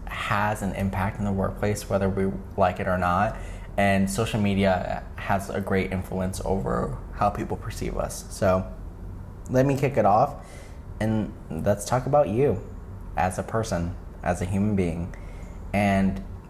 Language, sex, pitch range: English, male, 90-110 Hz